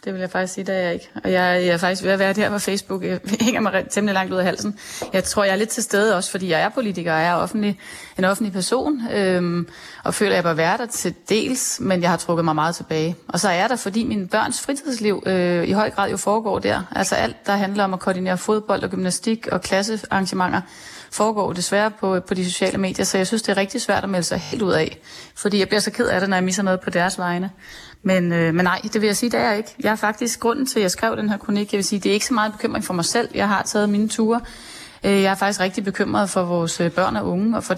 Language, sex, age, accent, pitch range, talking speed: Danish, female, 30-49, native, 185-215 Hz, 280 wpm